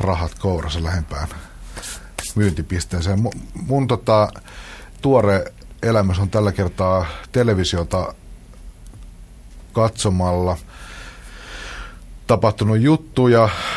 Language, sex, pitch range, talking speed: Finnish, male, 85-105 Hz, 70 wpm